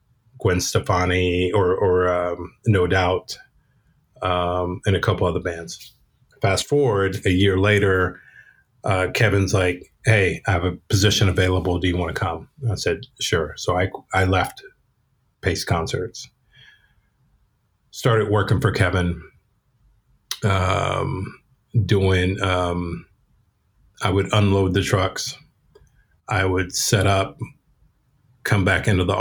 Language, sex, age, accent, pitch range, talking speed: English, male, 30-49, American, 90-110 Hz, 125 wpm